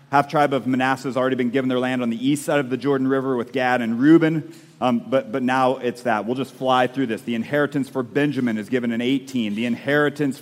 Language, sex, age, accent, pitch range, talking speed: English, male, 40-59, American, 130-170 Hz, 240 wpm